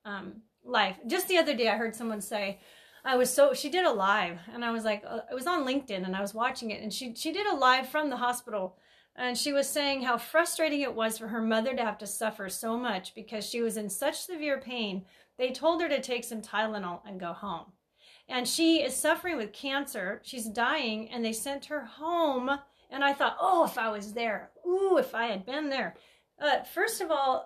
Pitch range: 220-295 Hz